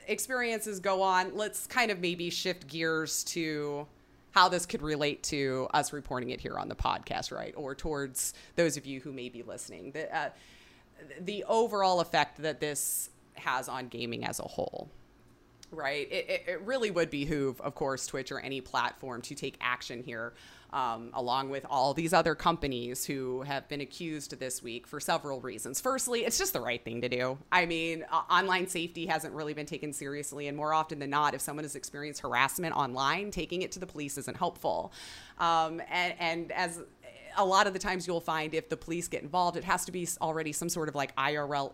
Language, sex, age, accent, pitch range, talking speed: English, female, 30-49, American, 140-185 Hz, 200 wpm